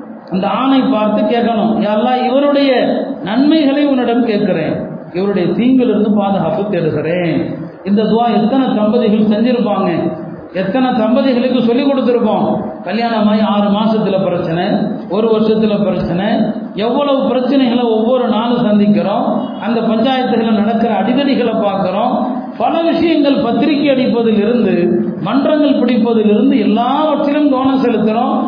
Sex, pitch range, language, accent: male, 205-250 Hz, Tamil, native